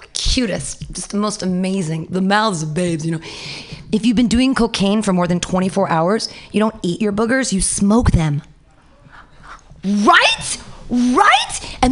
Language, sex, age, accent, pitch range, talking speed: English, female, 30-49, American, 165-255 Hz, 160 wpm